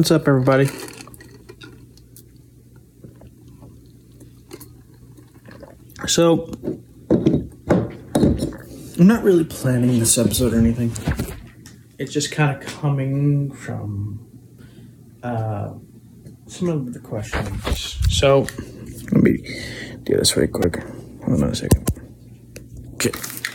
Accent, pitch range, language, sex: American, 120-150 Hz, English, male